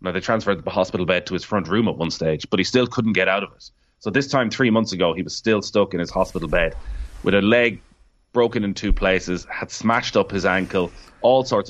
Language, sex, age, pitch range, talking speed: English, male, 30-49, 95-115 Hz, 250 wpm